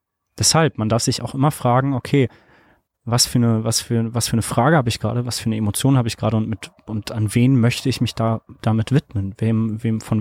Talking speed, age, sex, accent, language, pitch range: 240 wpm, 20-39, male, German, German, 110-125 Hz